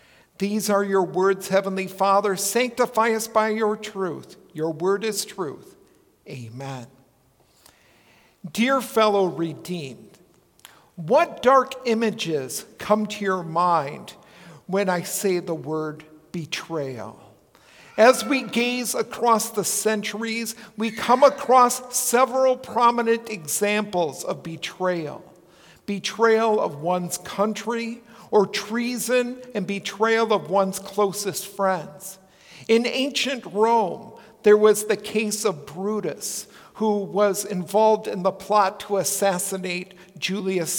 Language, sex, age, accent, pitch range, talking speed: English, male, 60-79, American, 190-230 Hz, 110 wpm